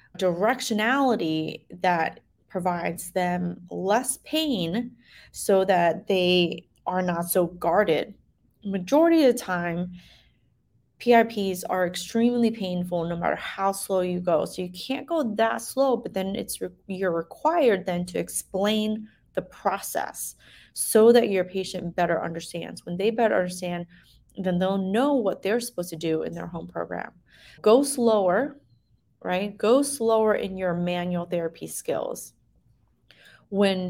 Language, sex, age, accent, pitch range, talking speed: English, female, 20-39, American, 175-225 Hz, 135 wpm